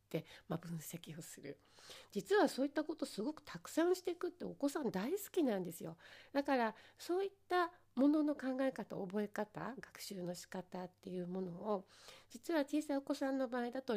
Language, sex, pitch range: Japanese, female, 180-280 Hz